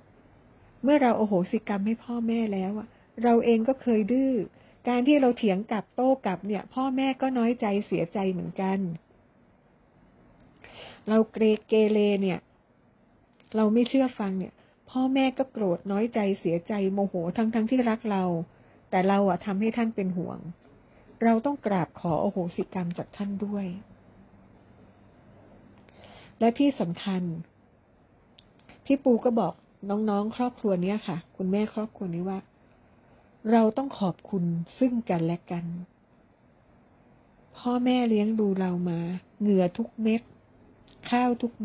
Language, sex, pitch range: Thai, female, 175-230 Hz